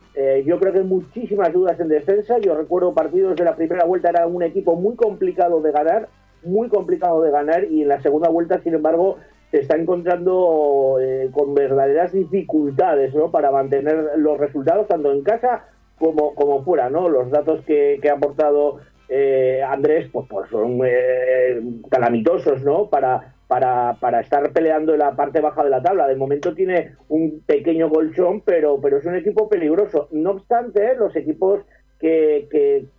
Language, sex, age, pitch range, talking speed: Spanish, male, 40-59, 140-185 Hz, 180 wpm